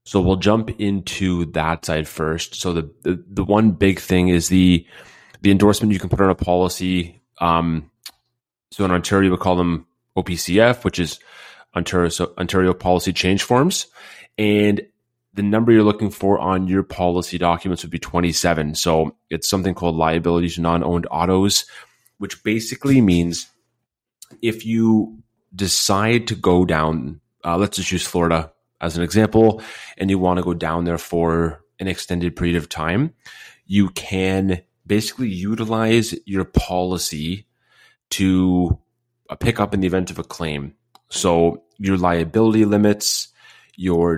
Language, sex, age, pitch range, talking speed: English, male, 30-49, 85-100 Hz, 150 wpm